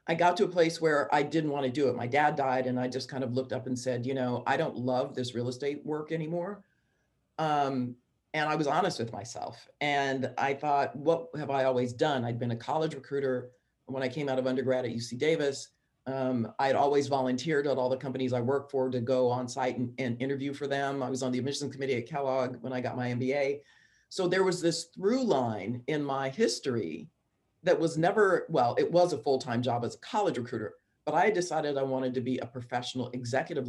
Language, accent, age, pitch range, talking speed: English, American, 40-59, 125-150 Hz, 230 wpm